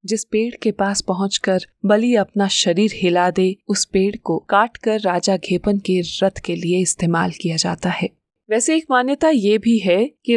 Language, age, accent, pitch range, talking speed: Hindi, 20-39, native, 185-225 Hz, 180 wpm